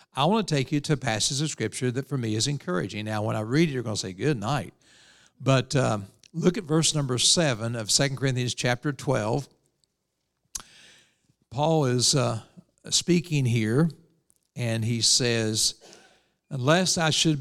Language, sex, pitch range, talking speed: English, male, 115-150 Hz, 170 wpm